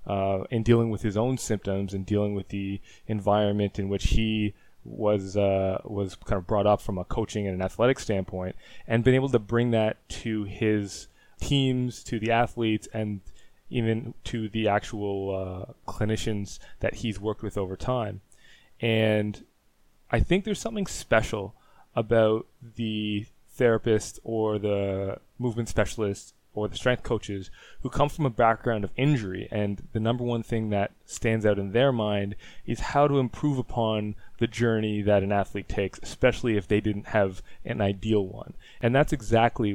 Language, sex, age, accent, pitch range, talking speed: English, male, 20-39, American, 100-120 Hz, 170 wpm